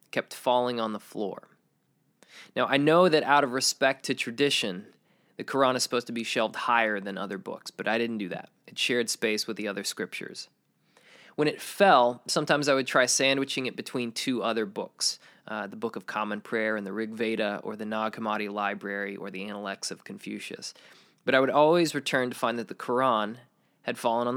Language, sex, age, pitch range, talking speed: English, male, 20-39, 110-130 Hz, 205 wpm